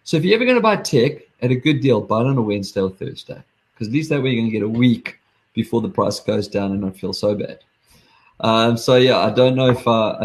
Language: English